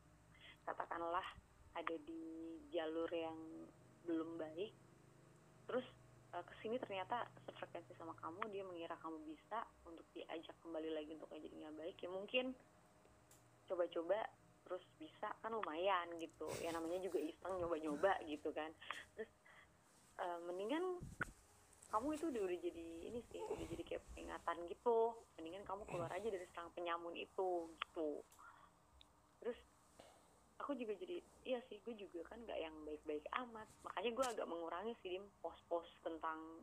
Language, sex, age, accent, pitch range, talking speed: Indonesian, female, 20-39, native, 155-200 Hz, 135 wpm